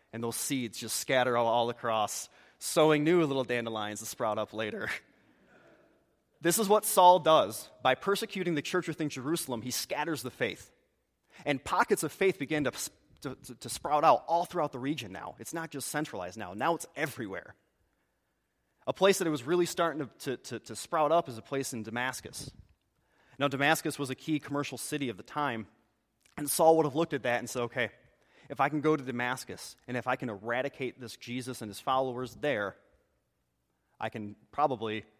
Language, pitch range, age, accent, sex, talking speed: English, 115-160 Hz, 30-49, American, male, 190 wpm